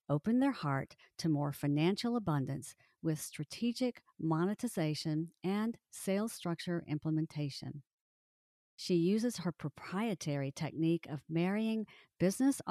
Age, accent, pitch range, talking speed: 50-69, American, 150-205 Hz, 105 wpm